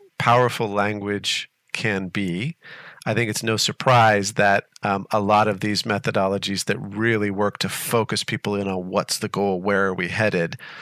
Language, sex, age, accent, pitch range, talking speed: English, male, 40-59, American, 100-130 Hz, 170 wpm